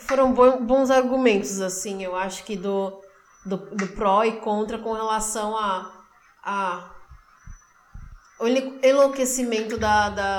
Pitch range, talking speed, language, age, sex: 210-255 Hz, 120 wpm, Portuguese, 20-39, female